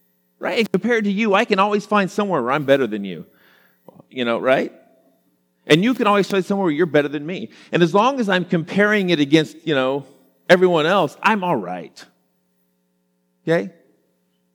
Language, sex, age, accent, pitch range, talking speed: English, male, 40-59, American, 115-180 Hz, 185 wpm